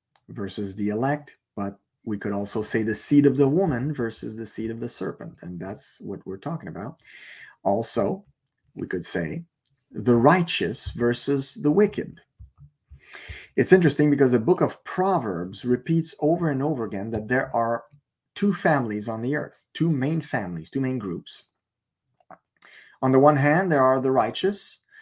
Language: English